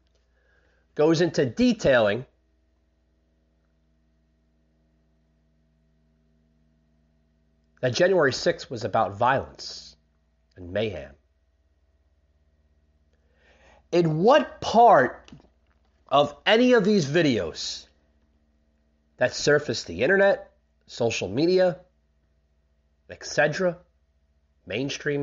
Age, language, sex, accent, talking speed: 30-49, English, male, American, 65 wpm